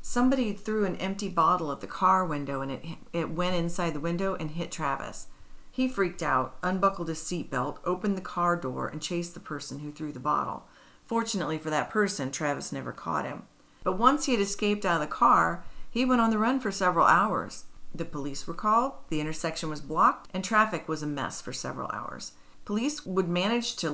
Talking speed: 210 wpm